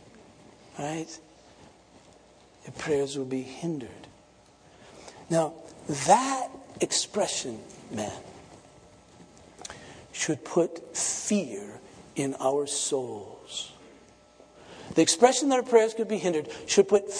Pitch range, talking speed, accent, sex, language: 135-200 Hz, 90 wpm, American, male, English